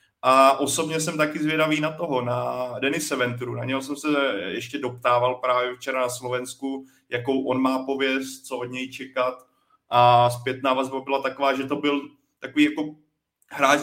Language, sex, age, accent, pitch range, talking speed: Czech, male, 30-49, native, 130-145 Hz, 170 wpm